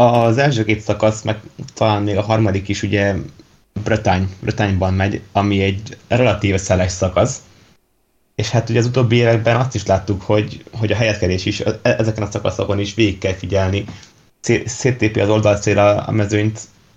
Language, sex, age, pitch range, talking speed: Hungarian, male, 20-39, 100-110 Hz, 155 wpm